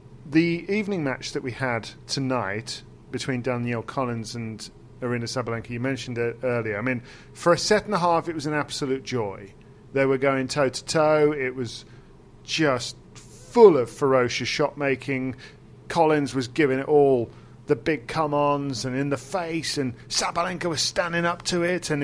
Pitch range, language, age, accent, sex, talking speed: 125-160 Hz, English, 40-59, British, male, 165 wpm